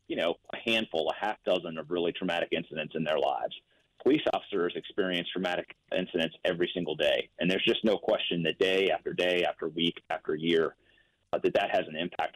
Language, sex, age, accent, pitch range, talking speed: English, male, 30-49, American, 85-100 Hz, 200 wpm